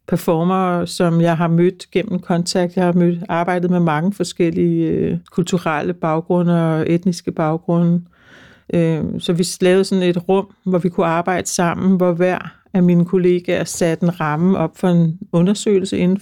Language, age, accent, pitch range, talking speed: Danish, 60-79, native, 170-185 Hz, 160 wpm